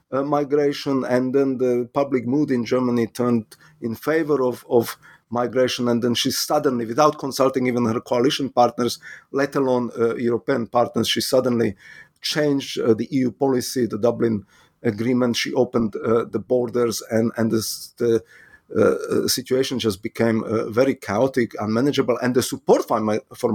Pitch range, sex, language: 120-140 Hz, male, English